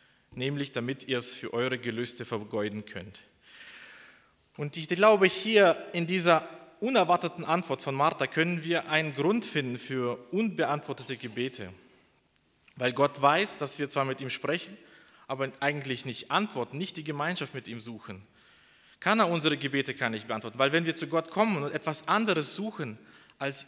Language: German